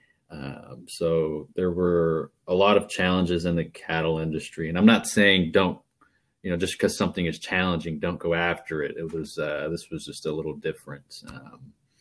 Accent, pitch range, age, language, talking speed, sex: American, 85-95 Hz, 30-49, English, 190 wpm, male